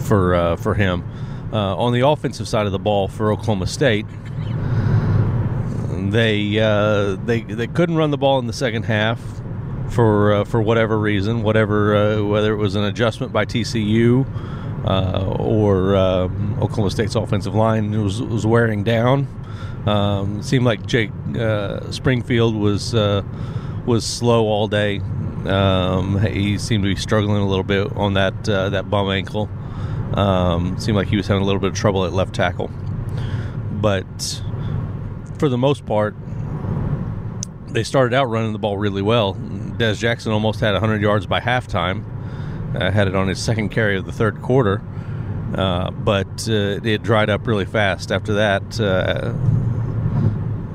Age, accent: 40-59, American